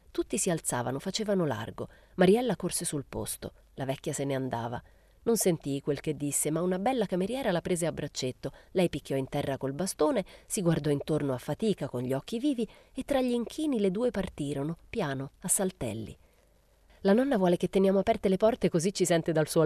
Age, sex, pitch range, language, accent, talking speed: 30-49, female, 145-200 Hz, Italian, native, 200 wpm